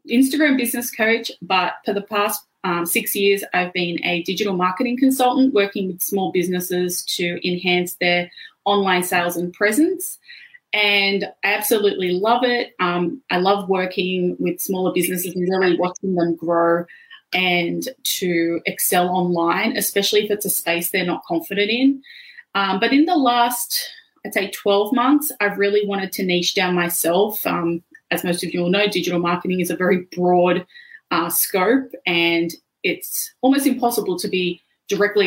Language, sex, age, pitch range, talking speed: English, female, 20-39, 180-210 Hz, 160 wpm